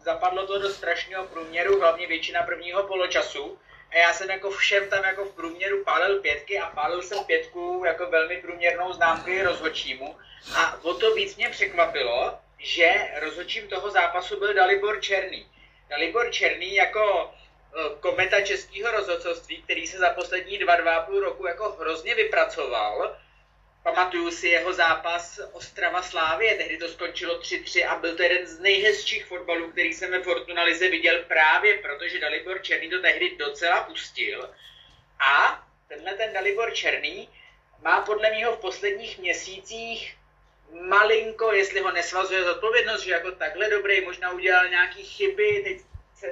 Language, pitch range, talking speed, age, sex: Czech, 170-215 Hz, 150 wpm, 30-49, male